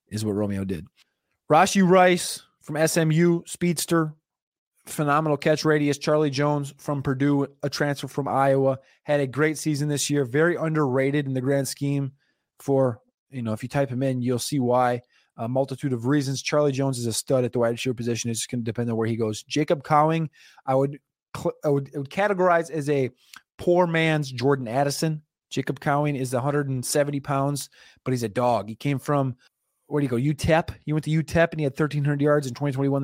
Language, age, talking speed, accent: English, 20-39, 200 wpm, American